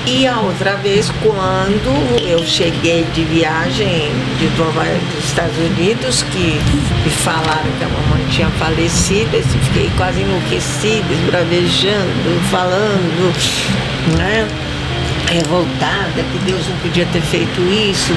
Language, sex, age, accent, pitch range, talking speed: Portuguese, female, 50-69, Brazilian, 130-170 Hz, 125 wpm